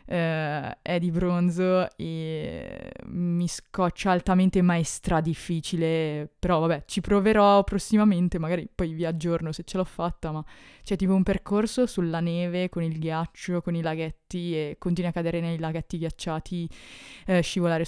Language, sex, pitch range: Italian, female, 170-195 Hz